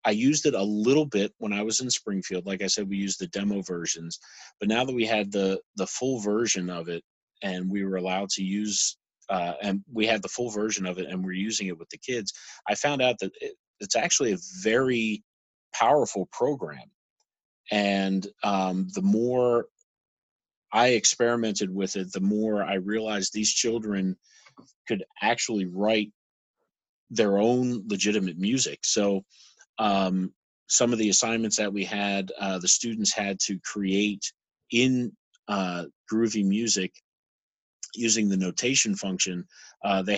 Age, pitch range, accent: 30-49, 95-110 Hz, American